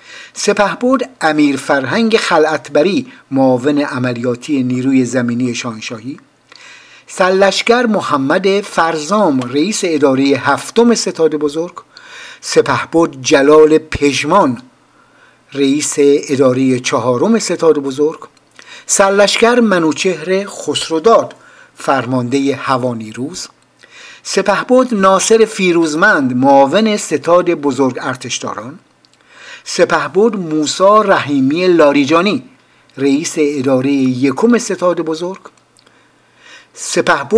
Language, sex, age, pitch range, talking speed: Persian, male, 50-69, 135-200 Hz, 75 wpm